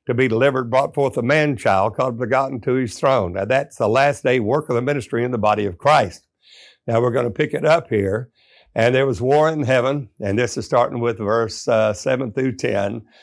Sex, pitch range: male, 120-145 Hz